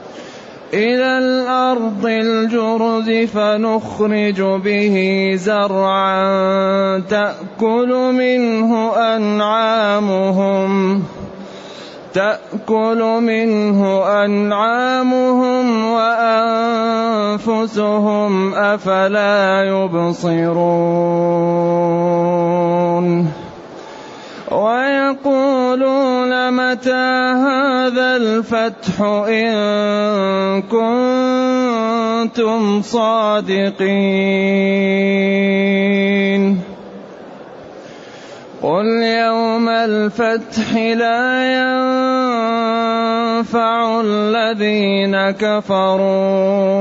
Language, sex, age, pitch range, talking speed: Arabic, male, 20-39, 195-230 Hz, 35 wpm